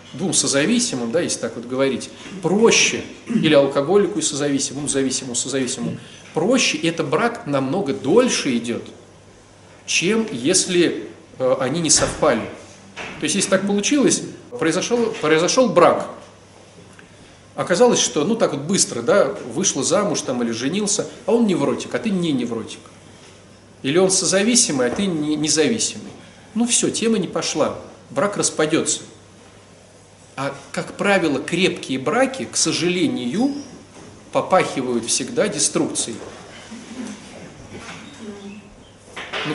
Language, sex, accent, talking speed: Russian, male, native, 120 wpm